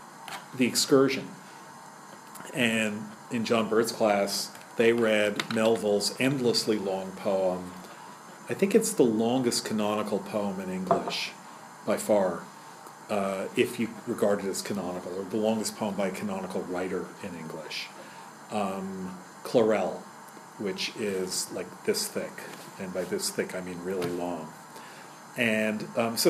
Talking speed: 135 wpm